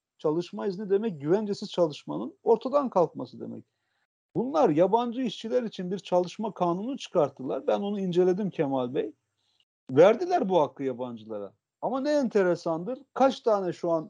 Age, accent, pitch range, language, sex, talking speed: 50-69, native, 145-225 Hz, Turkish, male, 135 wpm